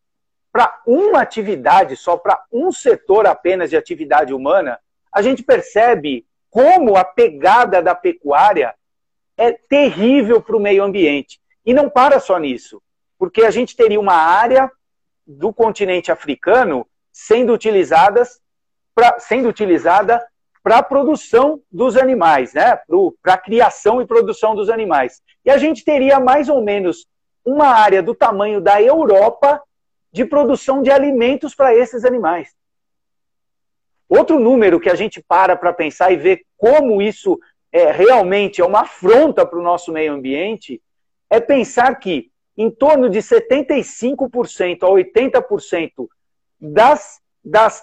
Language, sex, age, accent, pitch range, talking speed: Portuguese, male, 50-69, Brazilian, 210-295 Hz, 135 wpm